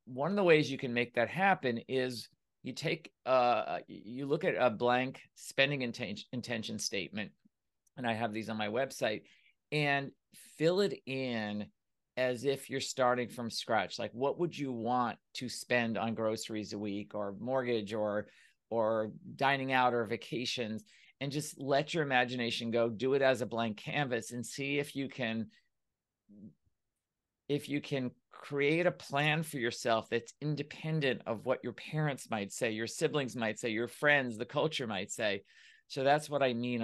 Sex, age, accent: male, 40-59, American